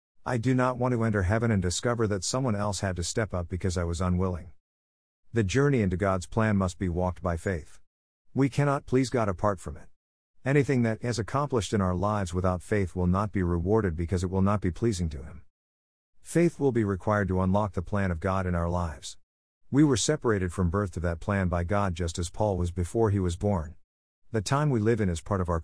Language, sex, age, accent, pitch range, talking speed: English, male, 50-69, American, 85-110 Hz, 230 wpm